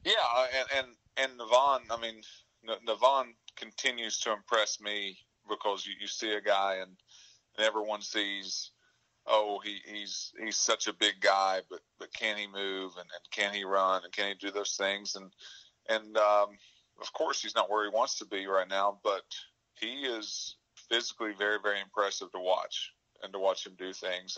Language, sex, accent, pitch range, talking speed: English, male, American, 95-105 Hz, 180 wpm